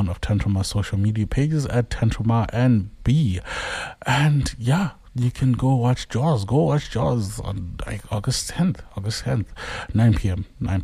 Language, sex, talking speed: English, male, 155 wpm